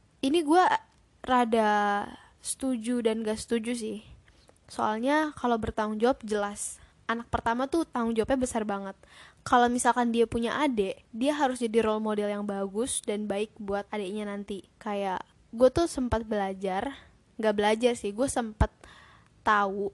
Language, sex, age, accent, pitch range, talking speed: Indonesian, female, 10-29, native, 215-245 Hz, 145 wpm